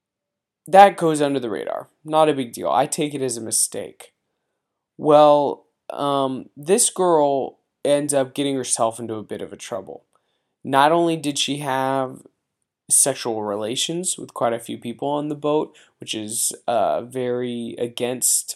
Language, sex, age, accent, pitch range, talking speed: English, male, 20-39, American, 120-150 Hz, 160 wpm